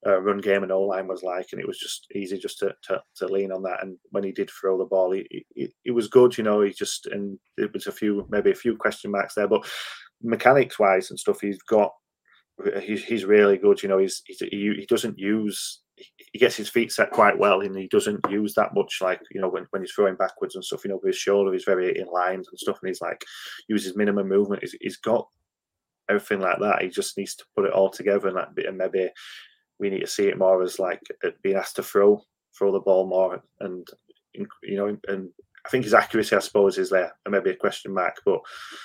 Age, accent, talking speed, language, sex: 20-39, British, 240 wpm, English, male